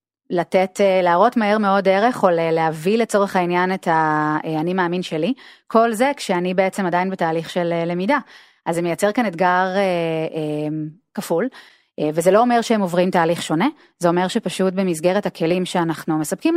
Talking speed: 160 wpm